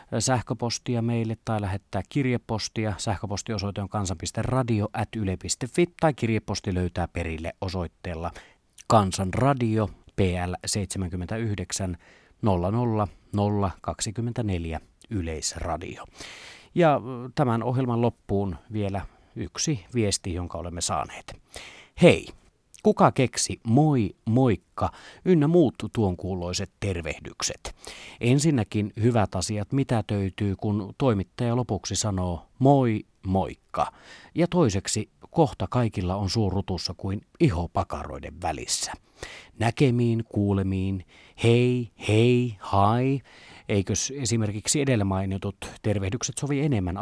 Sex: male